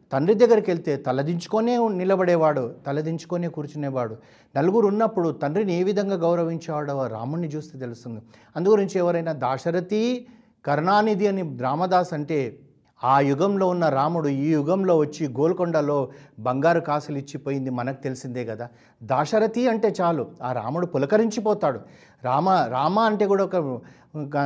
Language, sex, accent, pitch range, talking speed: Telugu, male, native, 130-180 Hz, 120 wpm